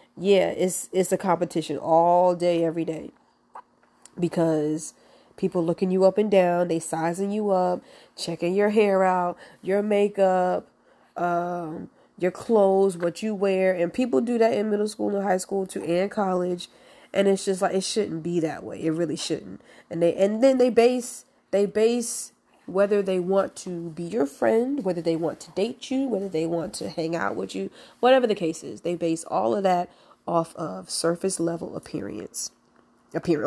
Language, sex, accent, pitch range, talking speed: English, female, American, 170-200 Hz, 180 wpm